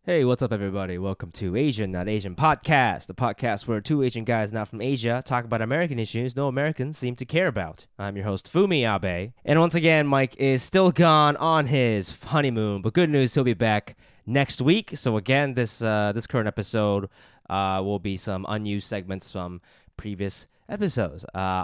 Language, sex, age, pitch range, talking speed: English, male, 20-39, 100-135 Hz, 190 wpm